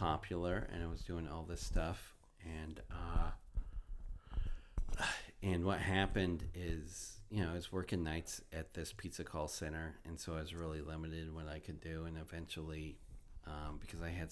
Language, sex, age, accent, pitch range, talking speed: English, male, 40-59, American, 75-85 Hz, 170 wpm